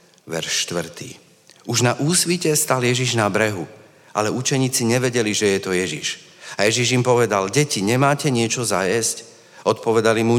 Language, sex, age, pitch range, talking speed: Slovak, male, 40-59, 100-120 Hz, 150 wpm